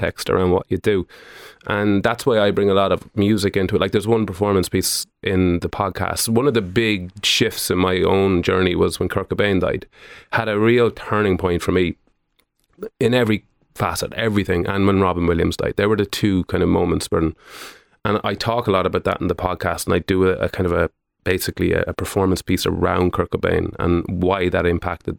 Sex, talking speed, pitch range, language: male, 215 wpm, 90-105 Hz, English